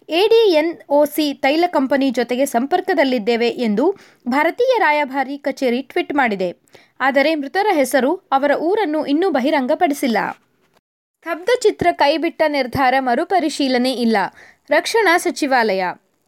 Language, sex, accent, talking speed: Kannada, female, native, 95 wpm